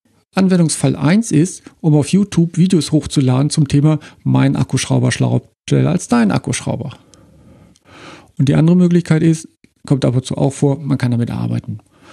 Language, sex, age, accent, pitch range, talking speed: German, male, 50-69, German, 130-160 Hz, 150 wpm